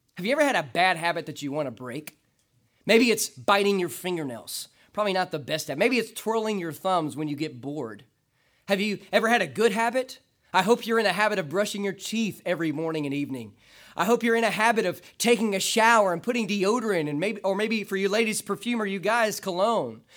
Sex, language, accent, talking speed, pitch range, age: male, English, American, 225 wpm, 165-240 Hz, 30-49